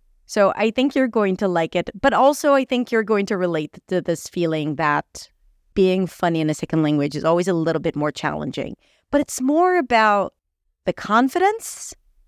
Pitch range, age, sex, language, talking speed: 170-245 Hz, 30-49, female, English, 190 wpm